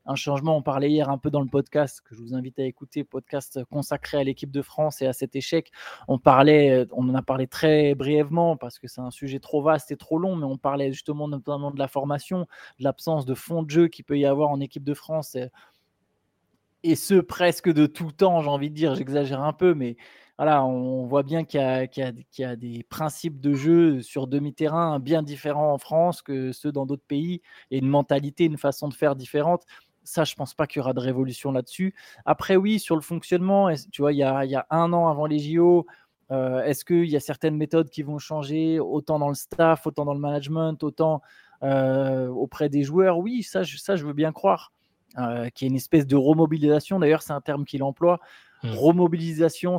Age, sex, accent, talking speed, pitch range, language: 20-39, male, French, 225 wpm, 135-160 Hz, French